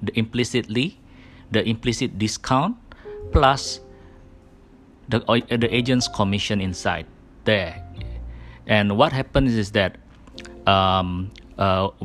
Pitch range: 95-120 Hz